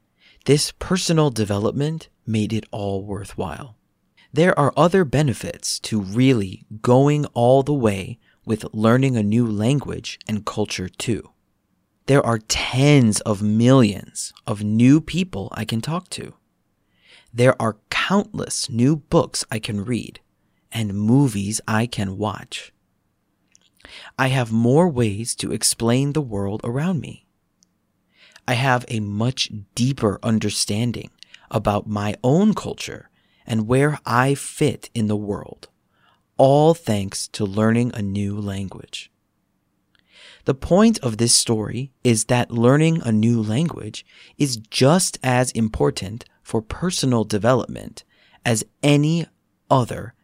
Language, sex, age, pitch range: Korean, male, 40-59, 105-135 Hz